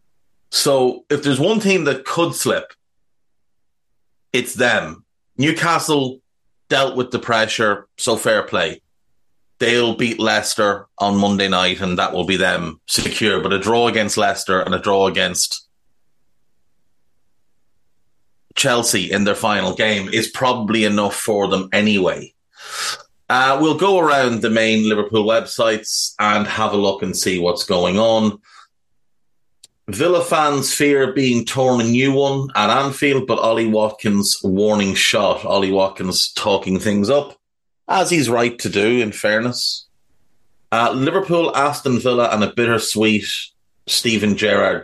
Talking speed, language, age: 140 wpm, English, 30-49